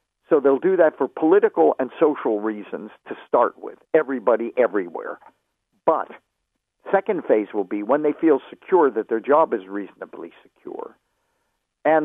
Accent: American